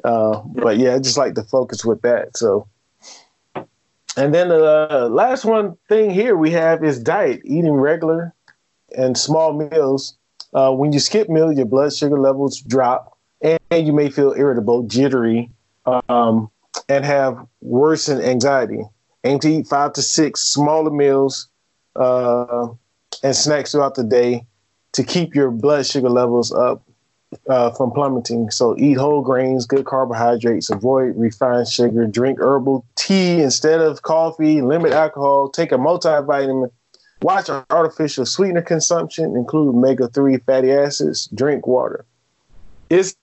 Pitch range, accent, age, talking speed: 120-155 Hz, American, 20-39, 145 wpm